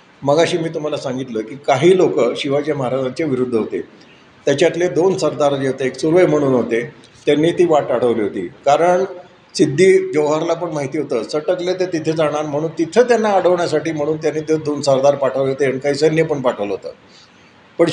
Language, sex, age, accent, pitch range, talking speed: Marathi, male, 50-69, native, 145-180 Hz, 180 wpm